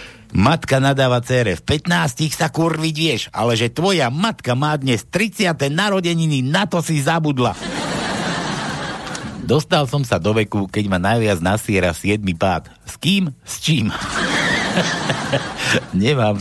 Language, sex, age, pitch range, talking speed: Slovak, male, 60-79, 110-160 Hz, 130 wpm